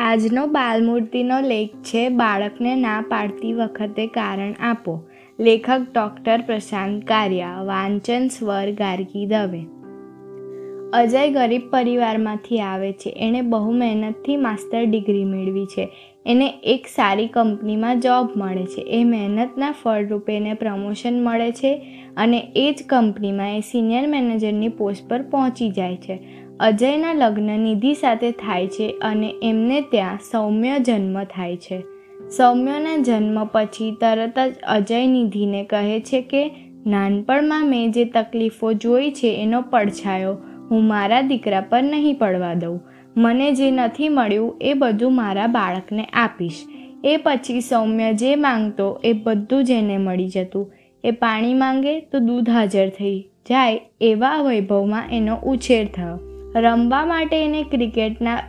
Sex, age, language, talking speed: female, 20-39, Gujarati, 105 wpm